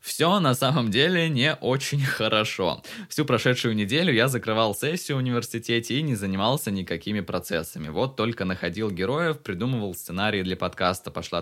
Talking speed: 150 wpm